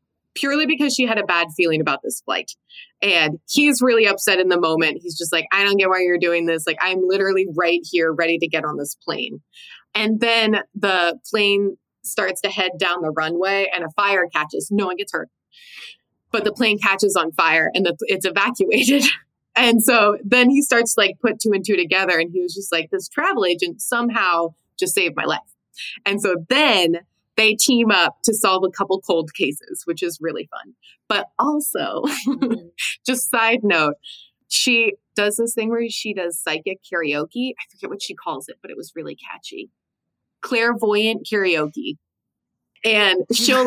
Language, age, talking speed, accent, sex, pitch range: English, 20-39, 185 wpm, American, female, 175-235 Hz